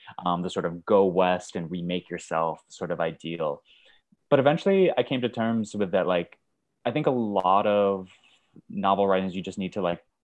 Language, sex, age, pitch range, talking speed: English, male, 20-39, 90-120 Hz, 195 wpm